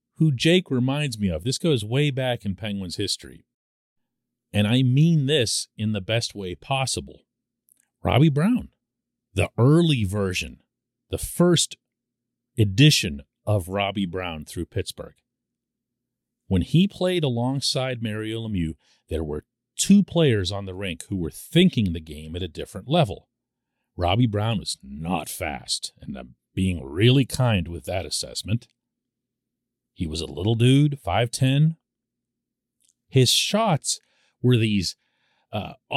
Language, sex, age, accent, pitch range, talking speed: English, male, 40-59, American, 100-160 Hz, 135 wpm